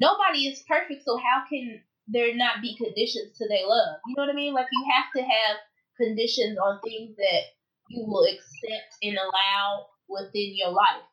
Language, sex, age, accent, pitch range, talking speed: English, female, 20-39, American, 215-280 Hz, 190 wpm